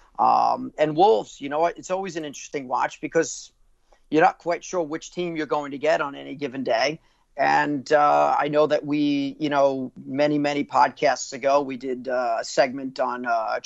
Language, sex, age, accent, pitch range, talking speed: English, male, 40-59, American, 135-155 Hz, 190 wpm